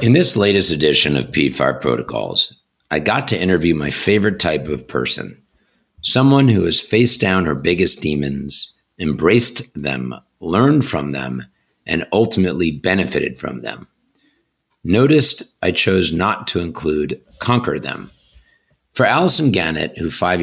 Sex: male